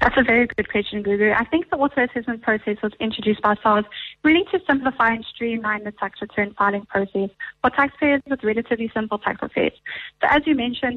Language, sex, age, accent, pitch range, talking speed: English, female, 30-49, American, 205-255 Hz, 195 wpm